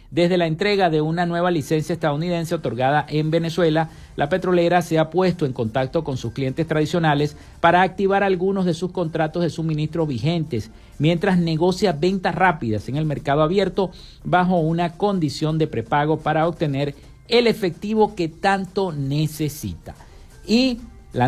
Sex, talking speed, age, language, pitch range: male, 150 wpm, 50-69, Spanish, 150-185 Hz